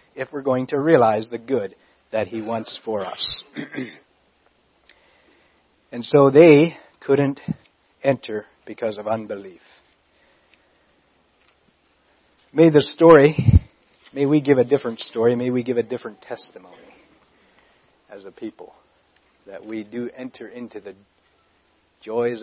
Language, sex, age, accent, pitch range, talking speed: English, male, 60-79, American, 110-155 Hz, 120 wpm